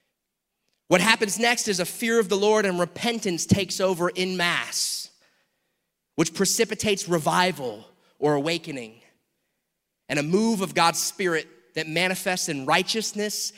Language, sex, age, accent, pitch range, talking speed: English, male, 30-49, American, 170-220 Hz, 135 wpm